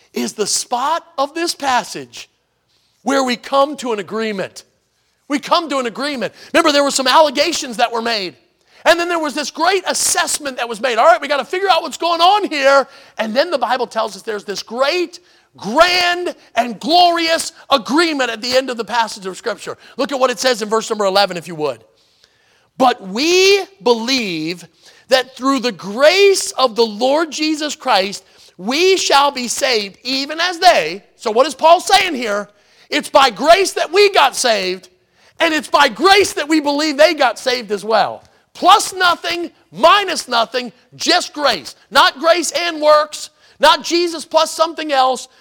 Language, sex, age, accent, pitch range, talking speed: English, male, 40-59, American, 230-325 Hz, 180 wpm